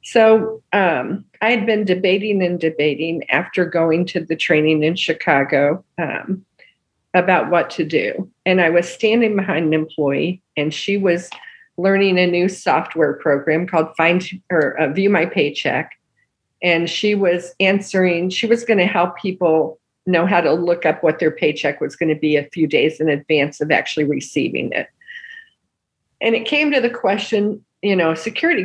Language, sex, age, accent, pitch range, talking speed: English, female, 50-69, American, 160-210 Hz, 170 wpm